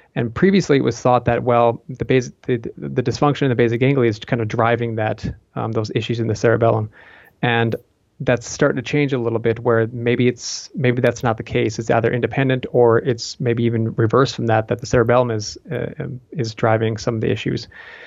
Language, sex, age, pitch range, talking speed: English, male, 30-49, 115-135 Hz, 215 wpm